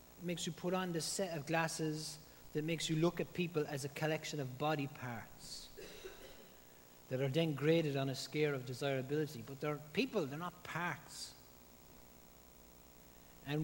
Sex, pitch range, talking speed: male, 110-150 Hz, 160 wpm